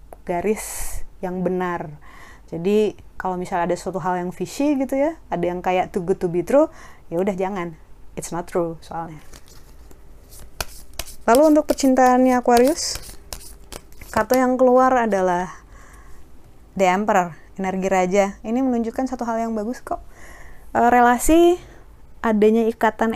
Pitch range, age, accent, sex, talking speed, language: 185-245 Hz, 20-39, native, female, 125 wpm, Indonesian